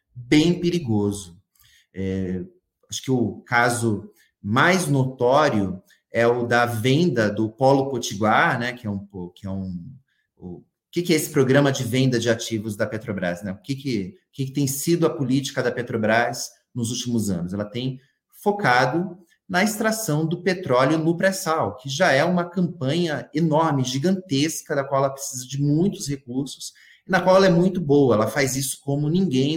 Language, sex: Portuguese, male